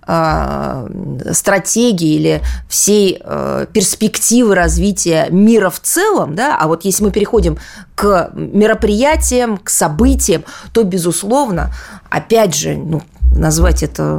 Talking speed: 105 wpm